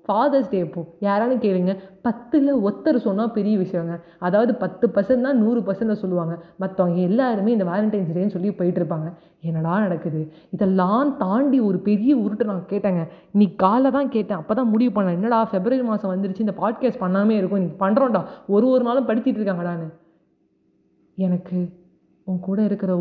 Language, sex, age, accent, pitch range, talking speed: Tamil, female, 30-49, native, 175-220 Hz, 145 wpm